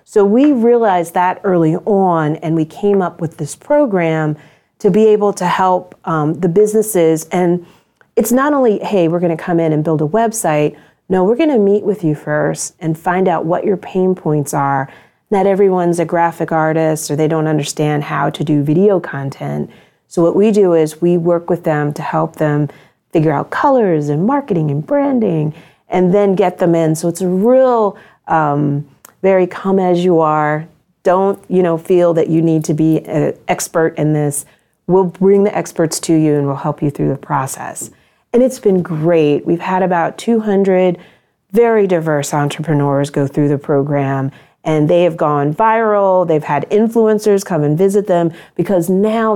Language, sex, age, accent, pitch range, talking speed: English, female, 40-59, American, 155-195 Hz, 185 wpm